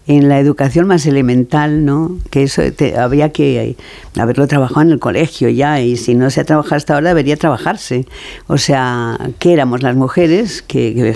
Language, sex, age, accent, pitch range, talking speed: Spanish, female, 50-69, Spanish, 130-155 Hz, 175 wpm